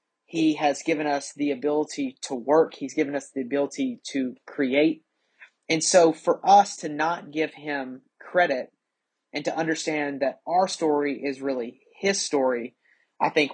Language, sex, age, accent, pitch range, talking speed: English, male, 30-49, American, 135-155 Hz, 160 wpm